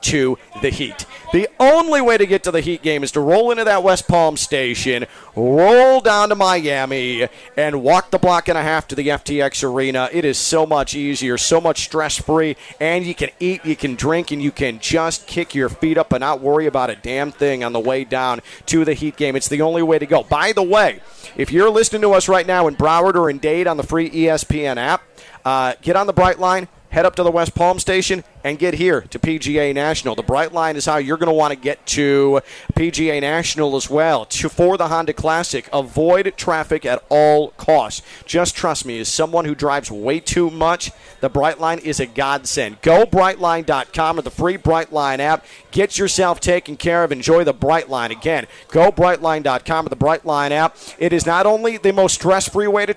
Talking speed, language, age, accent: 215 wpm, English, 40-59, American